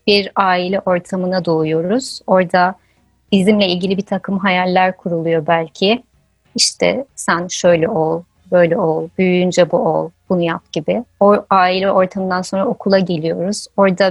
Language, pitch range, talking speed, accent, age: Turkish, 180-210 Hz, 130 wpm, native, 30-49